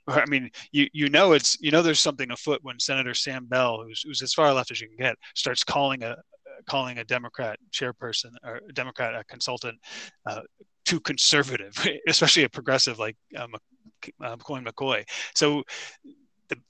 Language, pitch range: English, 115-140 Hz